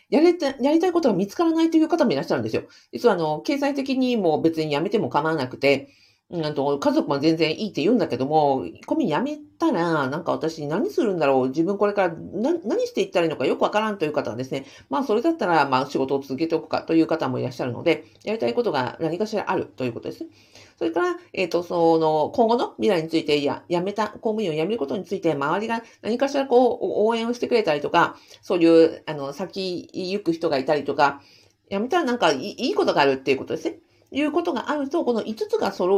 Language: Japanese